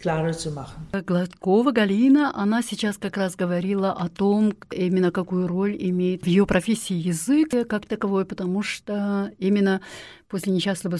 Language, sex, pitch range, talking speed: German, female, 175-215 Hz, 130 wpm